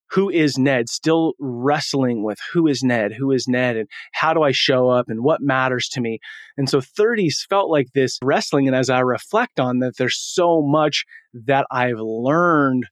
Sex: male